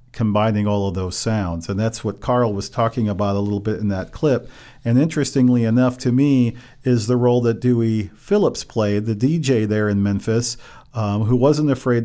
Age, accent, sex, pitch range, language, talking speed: 40-59, American, male, 110-130 Hz, English, 195 wpm